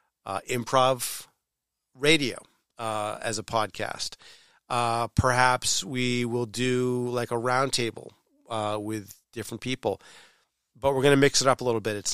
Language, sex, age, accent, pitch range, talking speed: English, male, 40-59, American, 115-135 Hz, 155 wpm